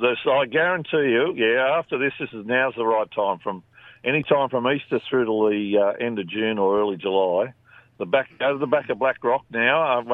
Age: 50-69